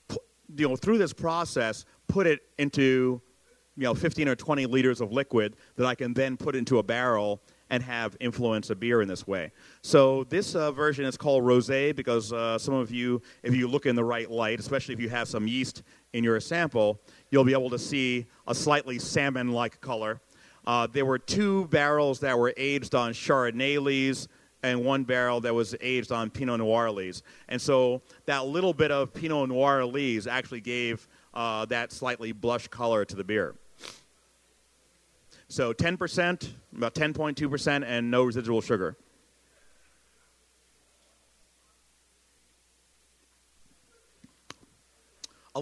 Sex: male